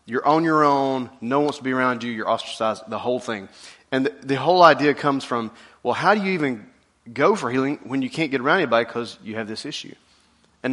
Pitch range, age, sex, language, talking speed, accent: 125-190 Hz, 30-49, male, English, 240 wpm, American